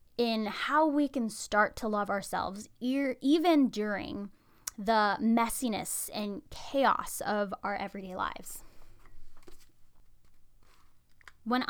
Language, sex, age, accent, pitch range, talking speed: English, female, 10-29, American, 195-245 Hz, 95 wpm